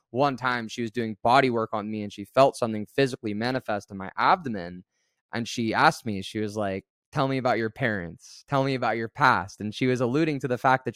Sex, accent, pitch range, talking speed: male, American, 110-135 Hz, 235 wpm